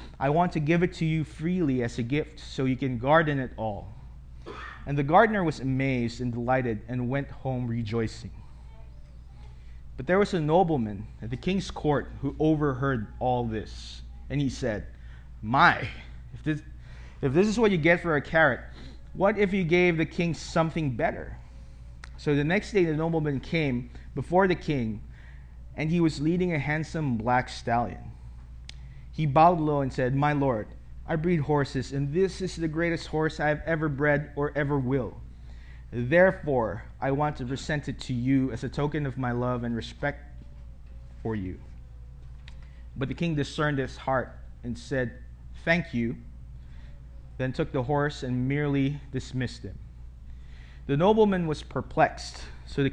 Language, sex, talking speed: English, male, 165 wpm